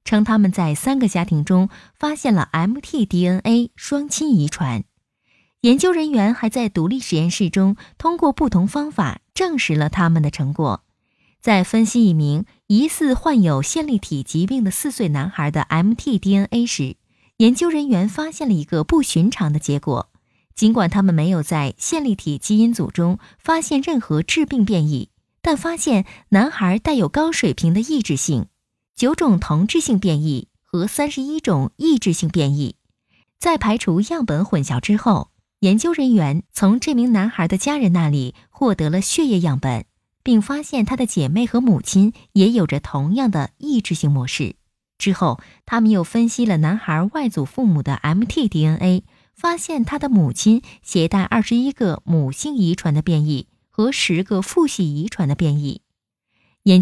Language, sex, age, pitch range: Chinese, female, 20-39, 160-240 Hz